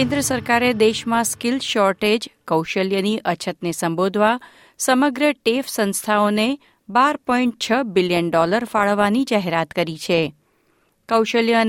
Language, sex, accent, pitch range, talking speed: Gujarati, female, native, 180-245 Hz, 115 wpm